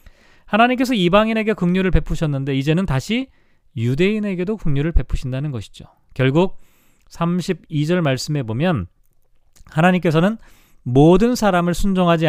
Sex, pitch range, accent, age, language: male, 130-195 Hz, native, 40-59, Korean